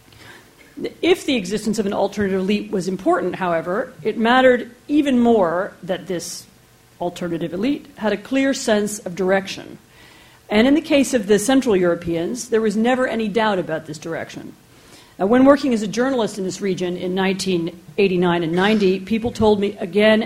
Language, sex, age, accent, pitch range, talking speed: English, female, 40-59, American, 180-220 Hz, 165 wpm